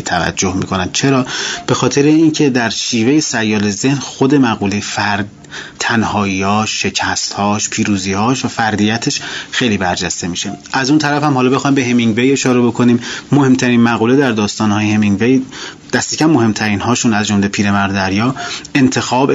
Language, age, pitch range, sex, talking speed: Persian, 30-49, 105-130 Hz, male, 135 wpm